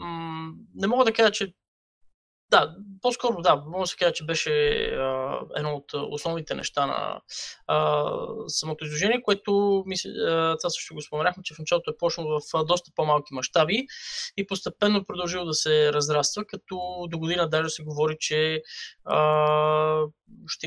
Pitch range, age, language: 150-200 Hz, 20-39, Bulgarian